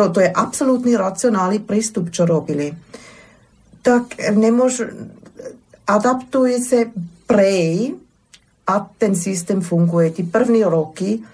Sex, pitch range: female, 180-220 Hz